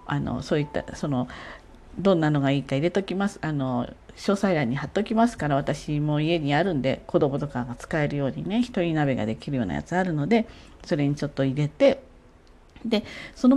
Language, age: Japanese, 40-59